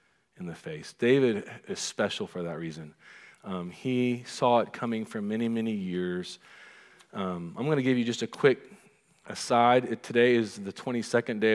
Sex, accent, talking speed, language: male, American, 175 wpm, English